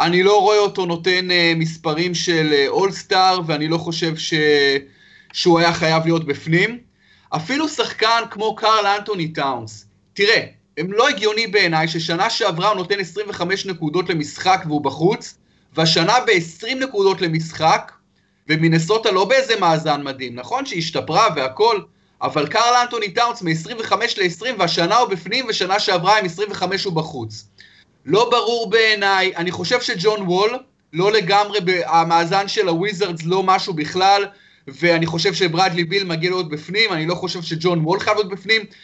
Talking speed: 150 wpm